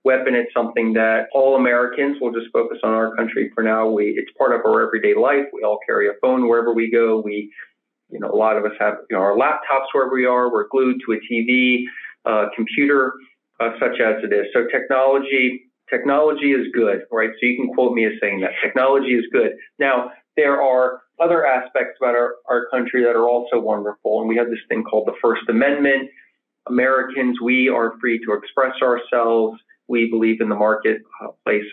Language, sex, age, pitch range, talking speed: English, male, 40-59, 115-135 Hz, 200 wpm